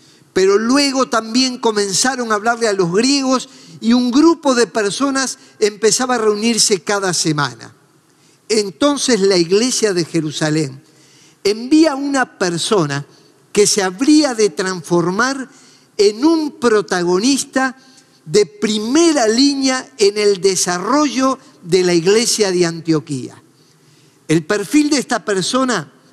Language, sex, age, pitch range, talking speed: Spanish, male, 50-69, 180-255 Hz, 120 wpm